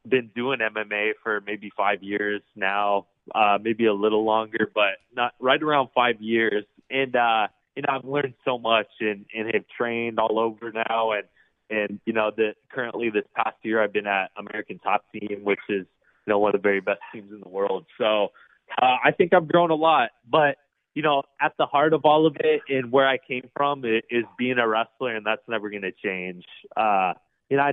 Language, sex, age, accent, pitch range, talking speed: English, male, 20-39, American, 105-135 Hz, 215 wpm